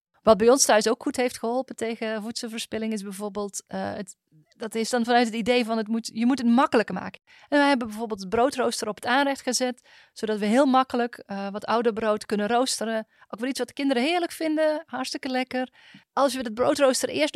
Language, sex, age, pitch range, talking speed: Dutch, female, 30-49, 220-265 Hz, 220 wpm